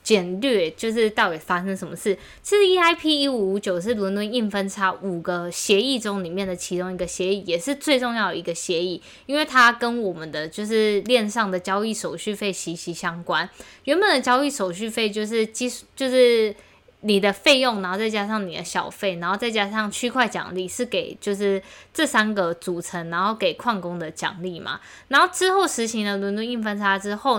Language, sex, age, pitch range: Chinese, female, 20-39, 185-240 Hz